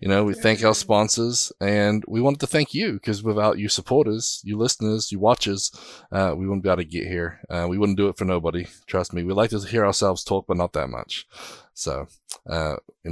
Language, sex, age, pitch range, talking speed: English, male, 20-39, 100-120 Hz, 230 wpm